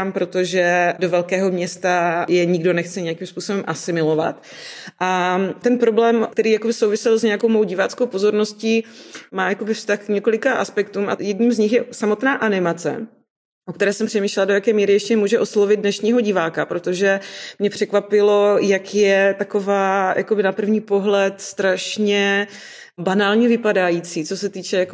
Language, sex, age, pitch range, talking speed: Czech, female, 30-49, 185-210 Hz, 140 wpm